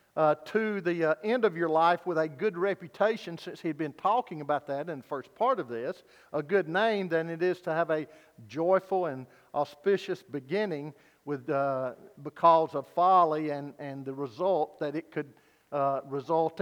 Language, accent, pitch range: English, American, 150-190 Hz